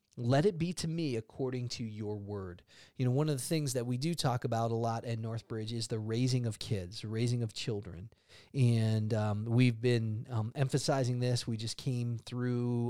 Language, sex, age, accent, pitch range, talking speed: English, male, 30-49, American, 115-140 Hz, 200 wpm